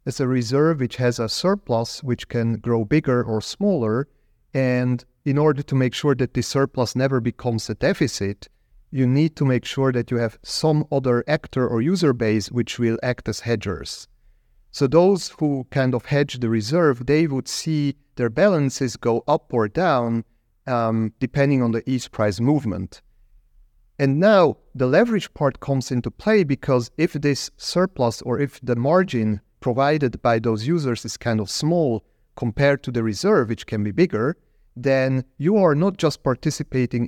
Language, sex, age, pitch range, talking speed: English, male, 40-59, 115-140 Hz, 175 wpm